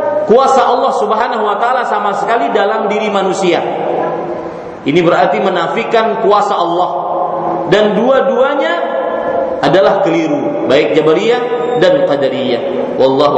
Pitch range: 190-275 Hz